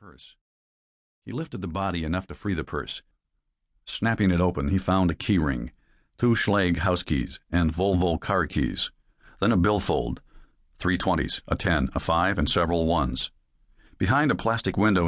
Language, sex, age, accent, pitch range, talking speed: English, male, 50-69, American, 80-95 Hz, 165 wpm